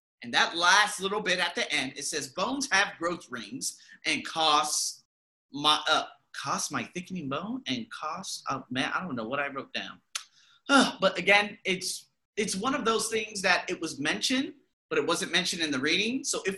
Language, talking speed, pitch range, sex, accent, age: English, 195 wpm, 150-225 Hz, male, American, 30-49